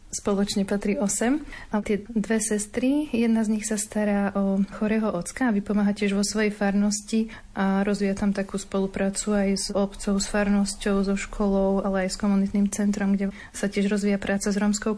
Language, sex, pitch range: Slovak, female, 195-215 Hz